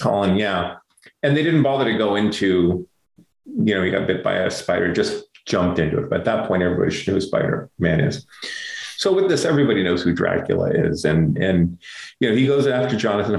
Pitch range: 90-145 Hz